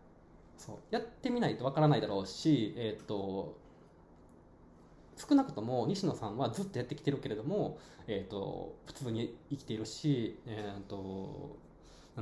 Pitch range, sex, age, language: 105-150 Hz, male, 20-39, Japanese